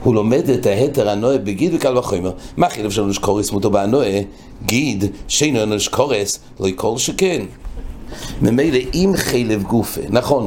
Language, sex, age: English, male, 60-79